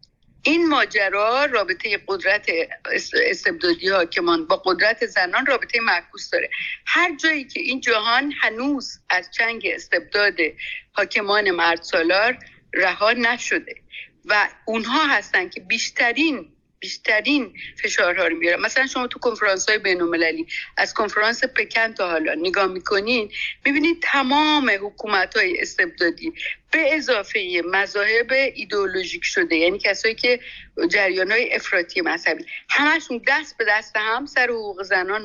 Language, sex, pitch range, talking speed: Persian, female, 200-310 Hz, 125 wpm